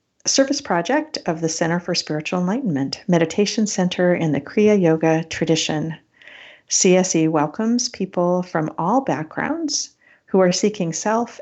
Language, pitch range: English, 155-210 Hz